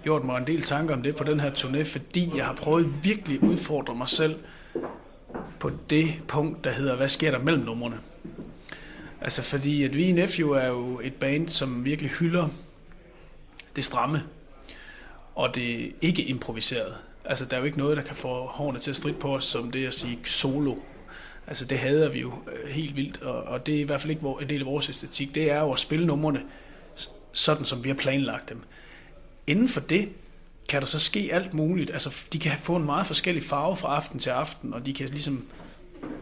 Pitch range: 135-160 Hz